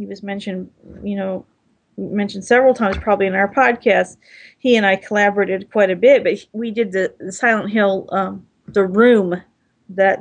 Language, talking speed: English, 175 wpm